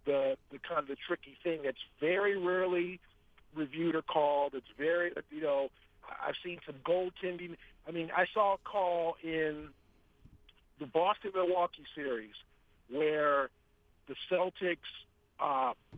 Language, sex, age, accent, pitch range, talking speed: English, male, 50-69, American, 155-205 Hz, 130 wpm